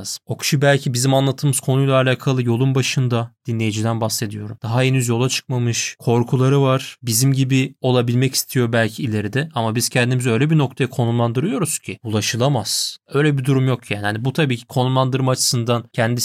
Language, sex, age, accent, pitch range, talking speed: Turkish, male, 30-49, native, 120-155 Hz, 160 wpm